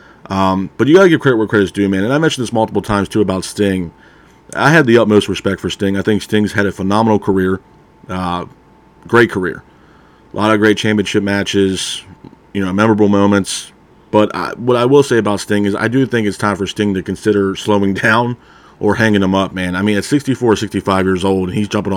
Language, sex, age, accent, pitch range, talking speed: English, male, 40-59, American, 95-110 Hz, 225 wpm